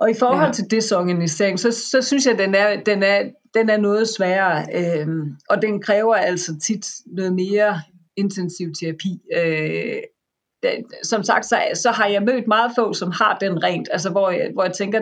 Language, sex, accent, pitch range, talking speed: Danish, female, native, 170-205 Hz, 195 wpm